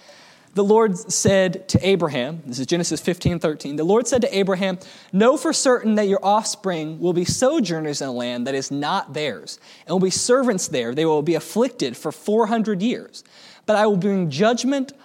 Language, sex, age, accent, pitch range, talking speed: English, male, 20-39, American, 175-230 Hz, 190 wpm